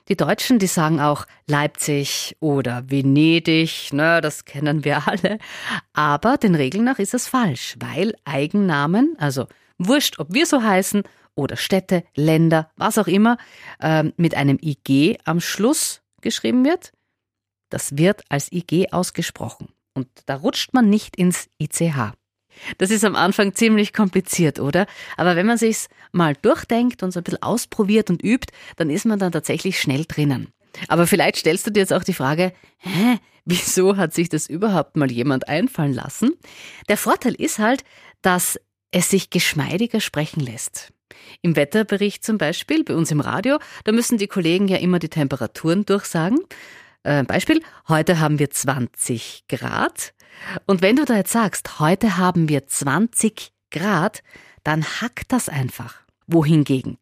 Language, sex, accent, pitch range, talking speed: German, female, German, 150-210 Hz, 160 wpm